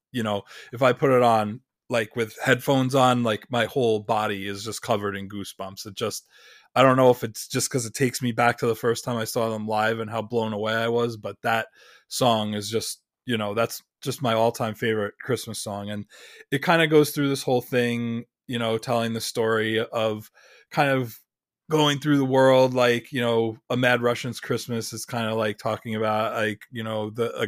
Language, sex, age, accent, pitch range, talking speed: English, male, 20-39, American, 110-120 Hz, 220 wpm